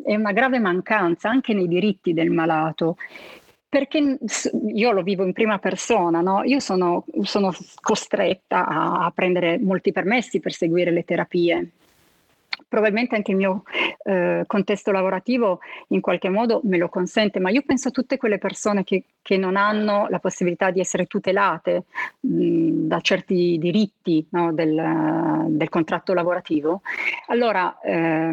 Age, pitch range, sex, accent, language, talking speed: 30-49, 170-210 Hz, female, native, Italian, 145 wpm